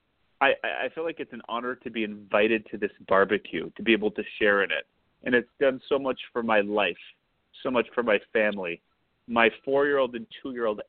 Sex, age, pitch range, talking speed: male, 30-49, 110-140 Hz, 205 wpm